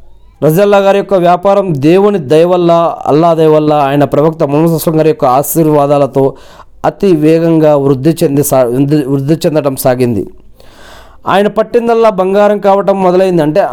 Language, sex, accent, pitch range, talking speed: Telugu, male, native, 140-180 Hz, 120 wpm